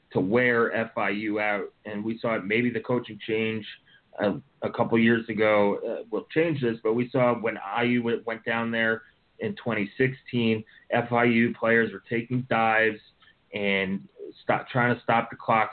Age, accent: 20-39, American